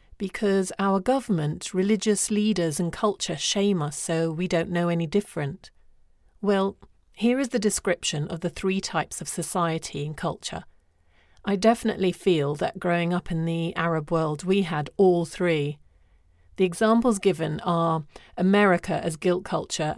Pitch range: 160-200 Hz